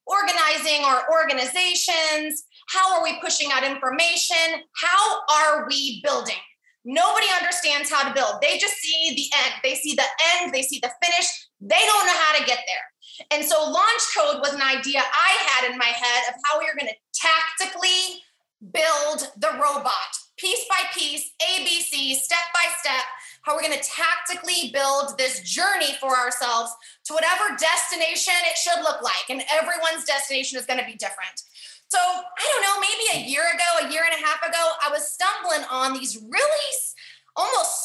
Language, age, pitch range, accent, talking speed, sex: English, 20-39, 280-355 Hz, American, 180 wpm, female